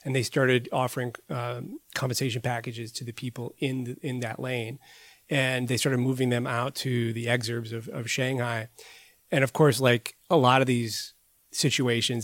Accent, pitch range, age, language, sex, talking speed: American, 115-130 Hz, 30-49, English, male, 175 wpm